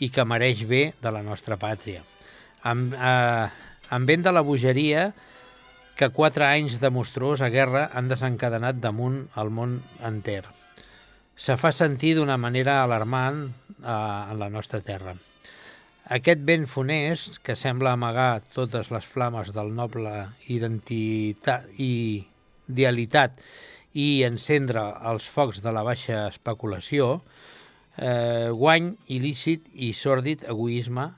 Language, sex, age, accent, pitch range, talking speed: Italian, male, 60-79, Spanish, 115-140 Hz, 125 wpm